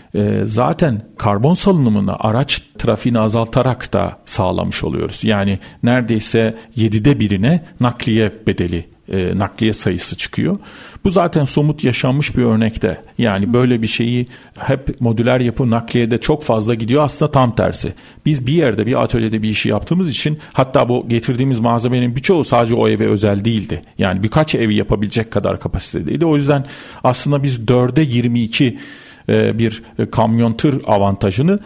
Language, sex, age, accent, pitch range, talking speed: Turkish, male, 40-59, native, 110-150 Hz, 140 wpm